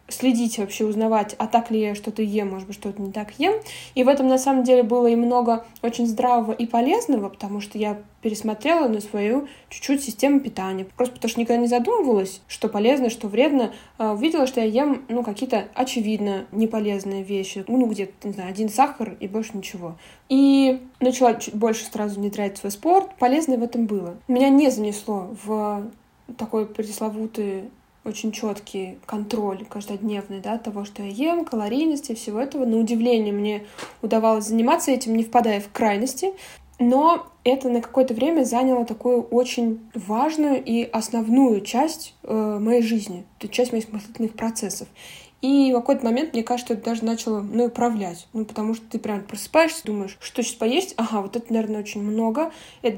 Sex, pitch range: female, 215-255 Hz